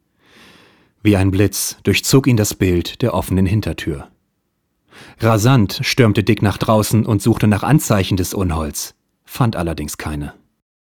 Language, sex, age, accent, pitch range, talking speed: German, male, 30-49, German, 85-110 Hz, 130 wpm